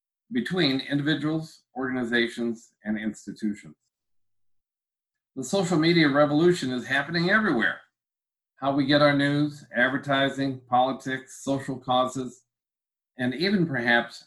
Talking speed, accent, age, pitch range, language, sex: 100 wpm, American, 50-69, 115-150 Hz, English, male